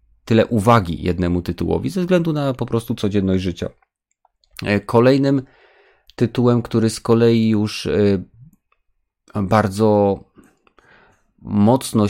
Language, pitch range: Polish, 95-120 Hz